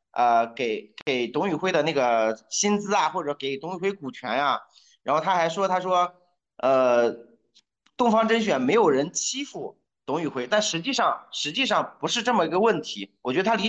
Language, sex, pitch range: Chinese, male, 145-210 Hz